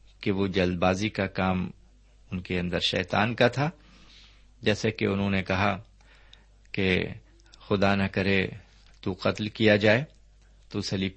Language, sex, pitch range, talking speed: Urdu, male, 95-120 Hz, 145 wpm